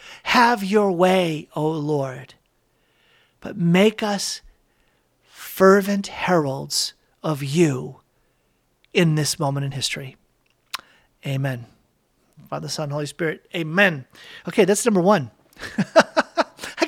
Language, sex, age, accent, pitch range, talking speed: English, male, 40-59, American, 160-230 Hz, 100 wpm